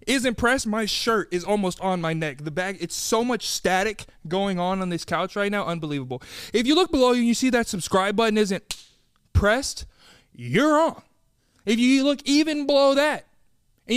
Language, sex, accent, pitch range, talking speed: English, male, American, 160-240 Hz, 190 wpm